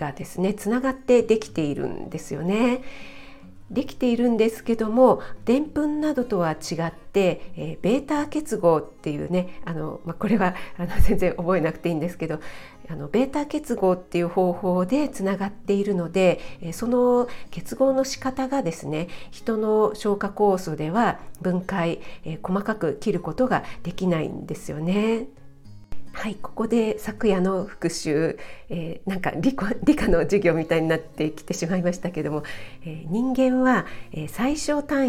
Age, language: 50-69, Japanese